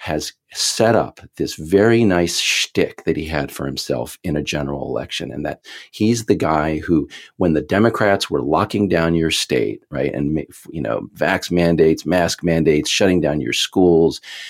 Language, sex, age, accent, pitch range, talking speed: English, male, 40-59, American, 75-100 Hz, 175 wpm